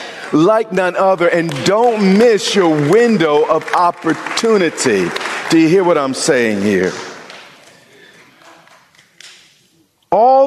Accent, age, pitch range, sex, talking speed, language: American, 50-69, 145-200 Hz, male, 105 wpm, English